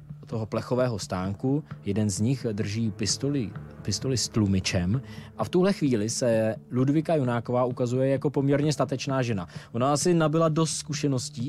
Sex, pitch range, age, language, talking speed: male, 110-140 Hz, 20-39, Czech, 145 wpm